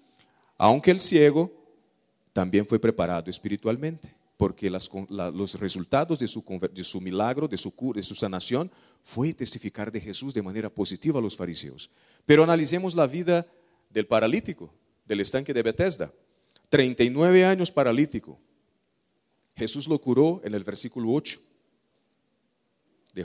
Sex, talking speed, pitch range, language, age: male, 135 wpm, 105-165 Hz, Portuguese, 40-59